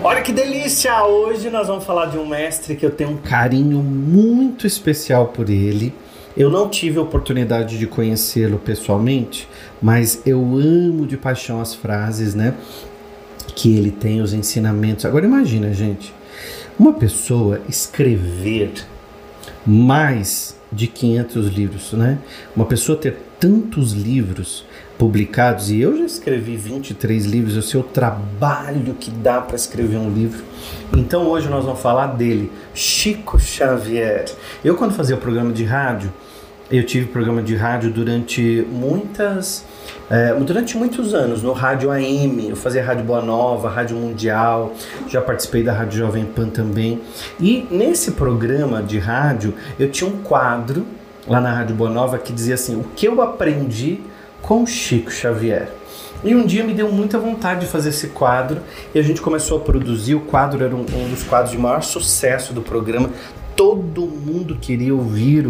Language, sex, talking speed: Portuguese, male, 160 wpm